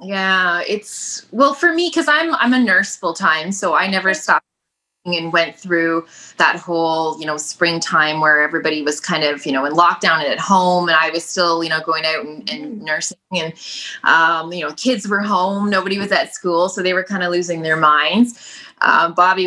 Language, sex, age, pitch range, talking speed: English, female, 20-39, 160-205 Hz, 205 wpm